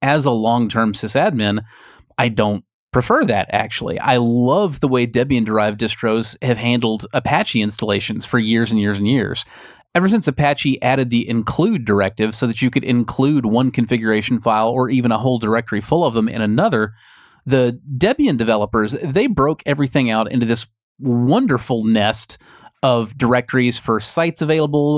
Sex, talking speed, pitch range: male, 160 wpm, 115-145 Hz